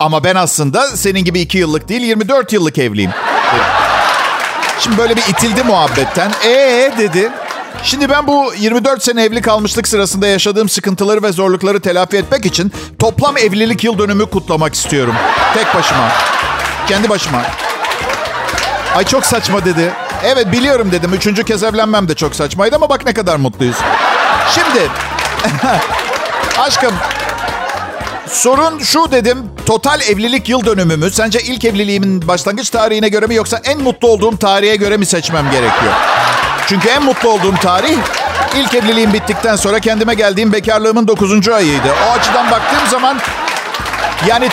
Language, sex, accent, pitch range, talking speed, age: Turkish, male, native, 195-240 Hz, 140 wpm, 50-69